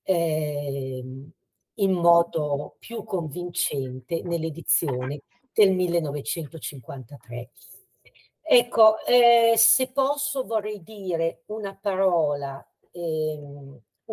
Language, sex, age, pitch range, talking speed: Italian, female, 50-69, 160-215 Hz, 70 wpm